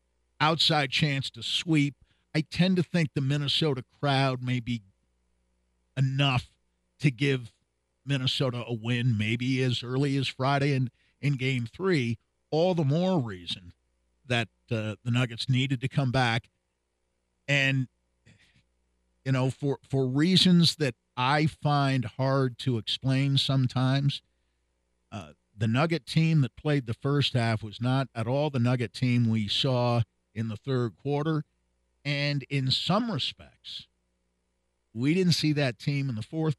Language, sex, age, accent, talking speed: English, male, 50-69, American, 145 wpm